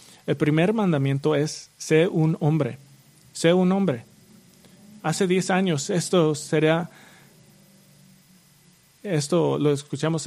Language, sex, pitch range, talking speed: English, male, 150-180 Hz, 105 wpm